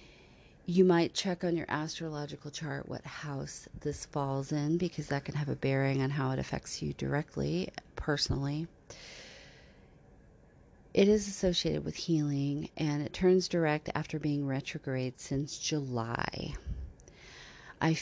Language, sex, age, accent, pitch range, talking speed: English, female, 40-59, American, 140-165 Hz, 135 wpm